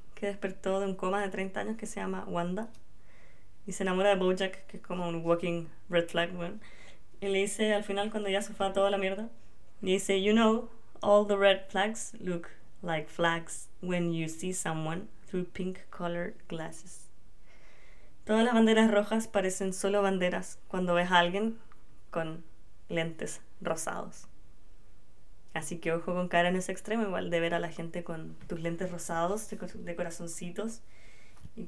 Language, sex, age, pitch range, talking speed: Spanish, female, 20-39, 170-210 Hz, 175 wpm